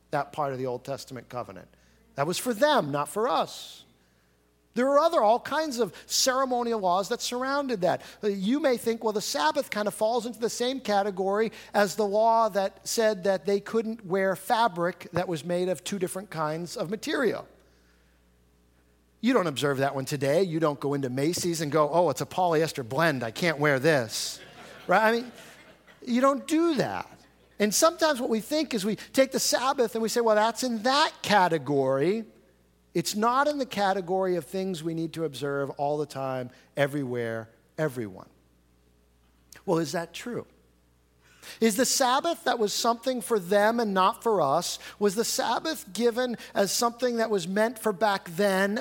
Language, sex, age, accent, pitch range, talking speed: English, male, 50-69, American, 135-225 Hz, 180 wpm